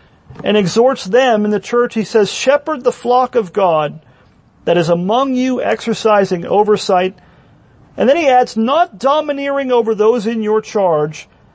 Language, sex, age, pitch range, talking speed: English, male, 40-59, 185-235 Hz, 155 wpm